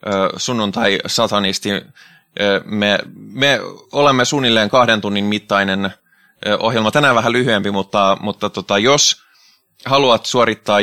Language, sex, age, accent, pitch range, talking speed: Finnish, male, 20-39, native, 105-125 Hz, 105 wpm